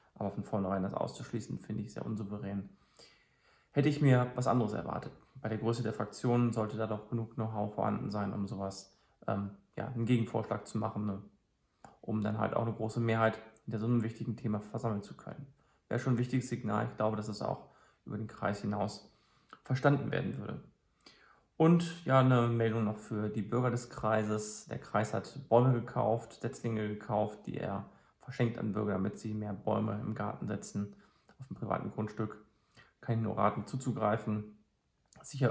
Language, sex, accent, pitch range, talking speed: German, male, German, 105-120 Hz, 180 wpm